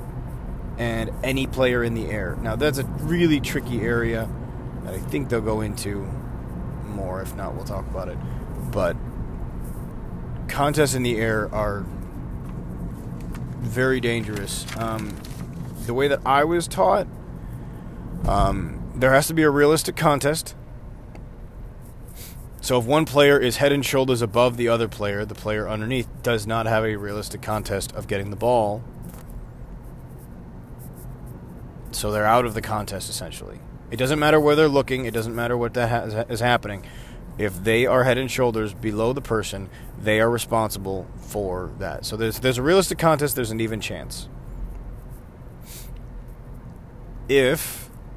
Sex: male